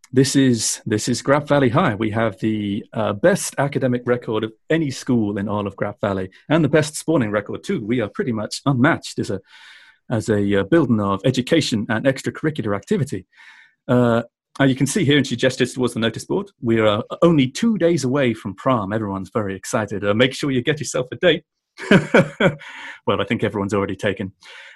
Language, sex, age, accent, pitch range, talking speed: English, male, 40-59, British, 105-130 Hz, 200 wpm